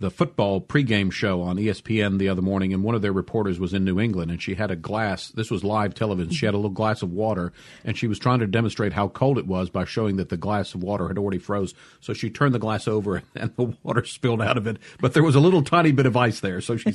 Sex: male